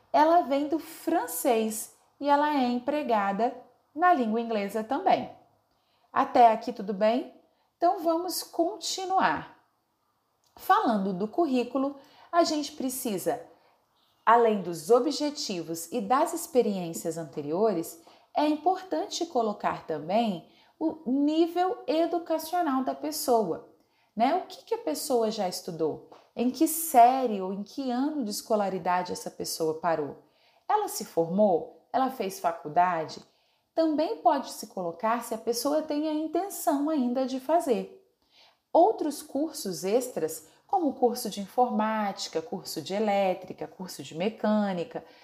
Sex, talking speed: female, 120 wpm